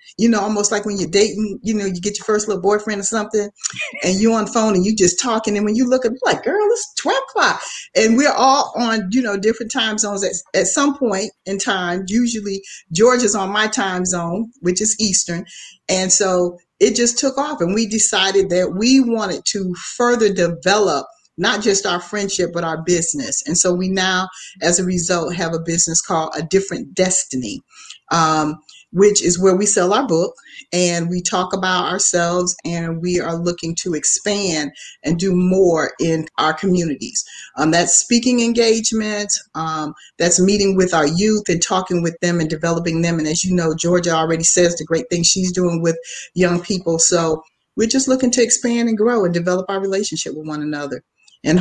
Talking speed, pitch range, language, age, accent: 200 wpm, 170-215 Hz, English, 40-59, American